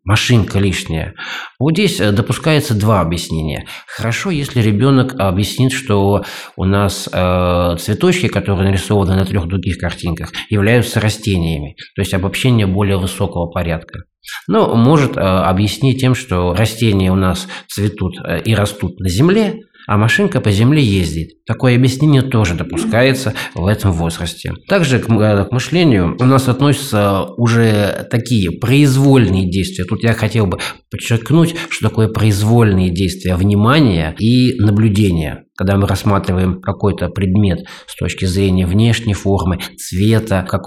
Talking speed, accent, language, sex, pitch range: 130 wpm, native, Russian, male, 95-120 Hz